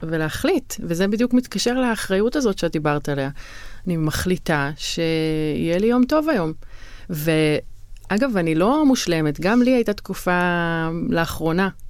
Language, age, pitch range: Hebrew, 30-49, 150-205 Hz